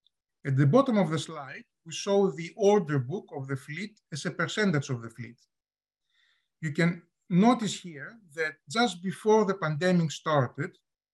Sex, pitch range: male, 150-195 Hz